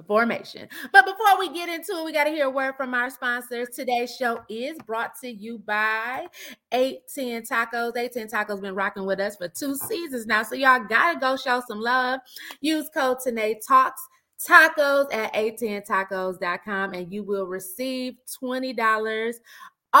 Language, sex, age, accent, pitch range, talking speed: English, female, 20-39, American, 190-250 Hz, 160 wpm